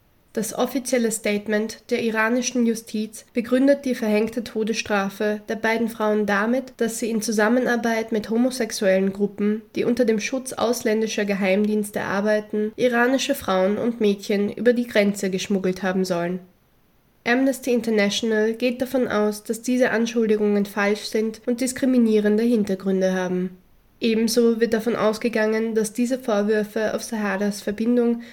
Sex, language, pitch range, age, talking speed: female, German, 205-235 Hz, 20-39, 130 wpm